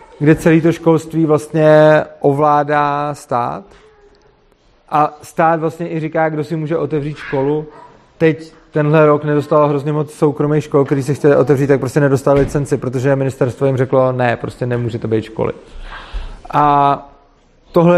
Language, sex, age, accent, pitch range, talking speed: Czech, male, 30-49, native, 145-170 Hz, 150 wpm